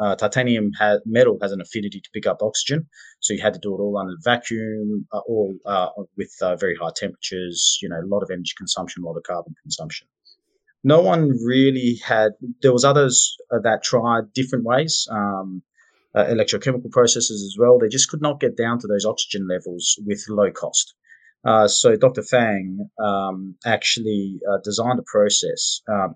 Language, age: English, 30-49